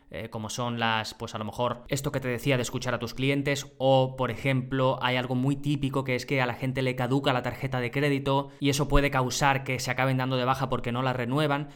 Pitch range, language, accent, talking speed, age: 120-140 Hz, Spanish, Spanish, 255 wpm, 20-39